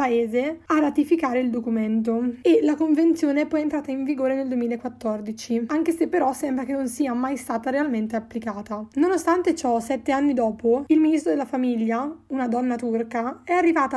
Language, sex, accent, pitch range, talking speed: Italian, female, native, 240-300 Hz, 170 wpm